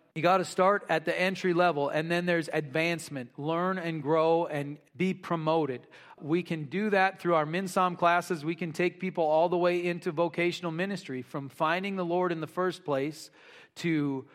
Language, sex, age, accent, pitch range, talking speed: English, male, 40-59, American, 155-180 Hz, 190 wpm